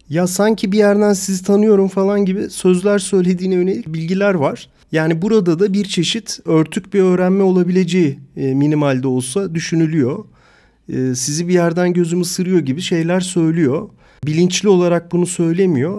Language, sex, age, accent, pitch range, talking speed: Turkish, male, 40-59, native, 140-180 Hz, 145 wpm